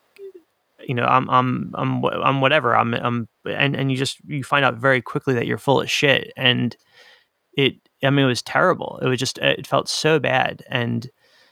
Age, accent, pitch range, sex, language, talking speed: 20-39, American, 120-140 Hz, male, English, 200 wpm